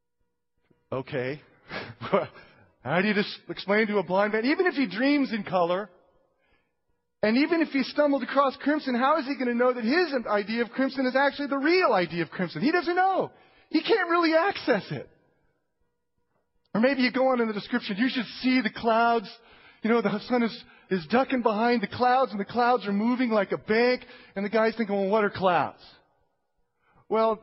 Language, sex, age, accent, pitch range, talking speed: English, male, 30-49, American, 210-260 Hz, 195 wpm